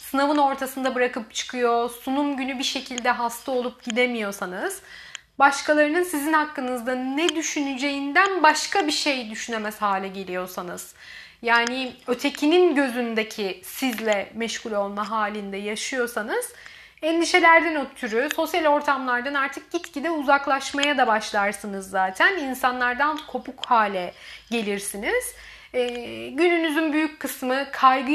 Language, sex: Turkish, female